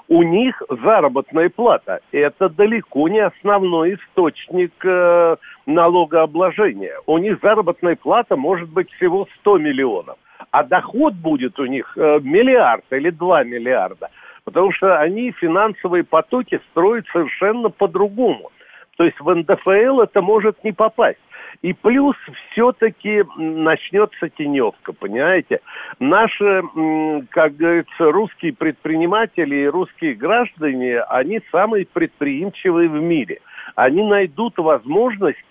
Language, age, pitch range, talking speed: Russian, 60-79, 160-230 Hz, 110 wpm